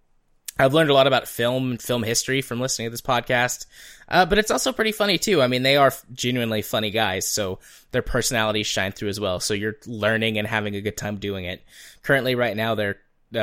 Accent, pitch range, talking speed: American, 100-120 Hz, 220 wpm